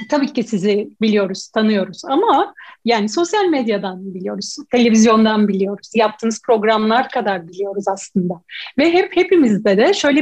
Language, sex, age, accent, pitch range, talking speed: Turkish, female, 40-59, native, 210-295 Hz, 130 wpm